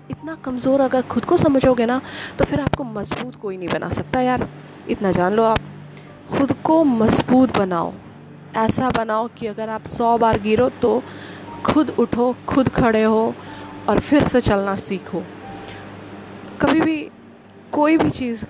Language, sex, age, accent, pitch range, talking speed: Hindi, female, 20-39, native, 185-230 Hz, 155 wpm